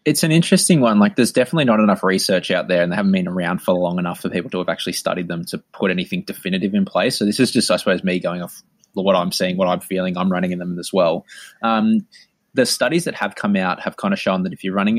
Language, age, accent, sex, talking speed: English, 20-39, Australian, male, 275 wpm